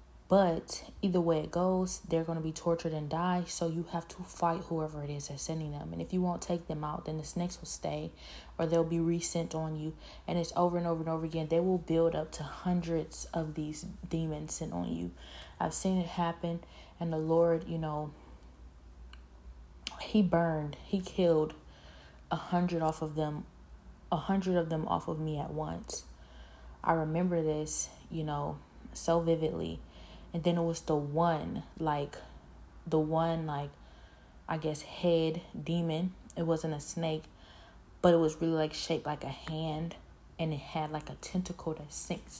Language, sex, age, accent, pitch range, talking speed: English, female, 20-39, American, 150-170 Hz, 185 wpm